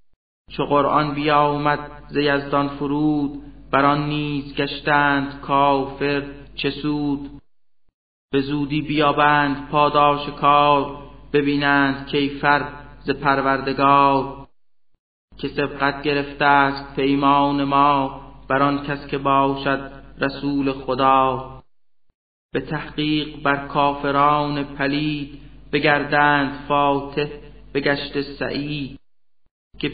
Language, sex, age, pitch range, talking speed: Persian, male, 30-49, 140-145 Hz, 90 wpm